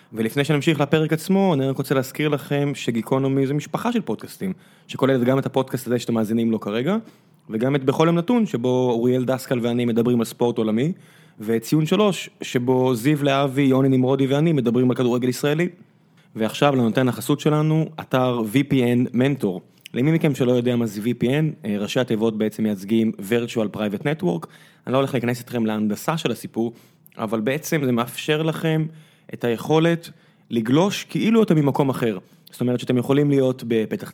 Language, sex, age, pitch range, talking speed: Hebrew, male, 20-39, 120-165 Hz, 150 wpm